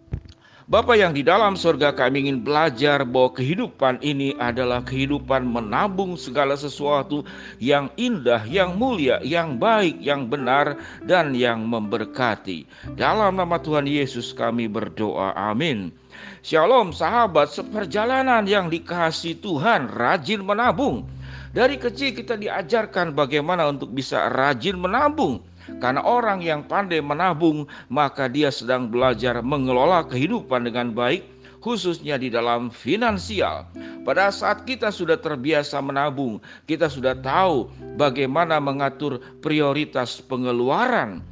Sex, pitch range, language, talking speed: male, 130-175 Hz, Indonesian, 120 wpm